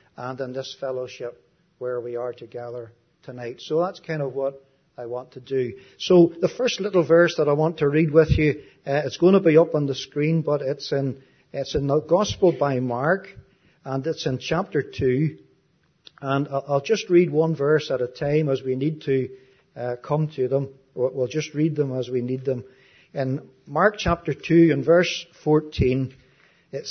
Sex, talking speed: male, 190 wpm